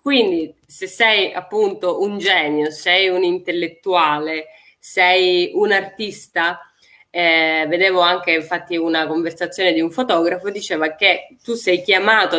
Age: 20-39